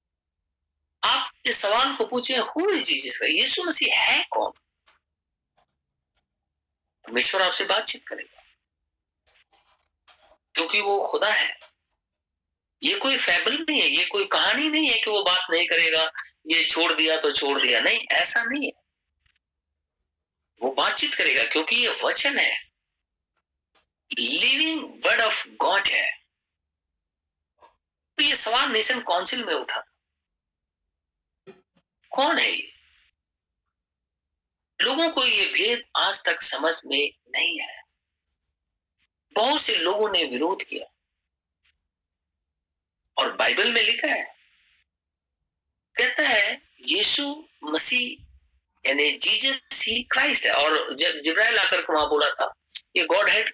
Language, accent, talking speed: Hindi, native, 120 wpm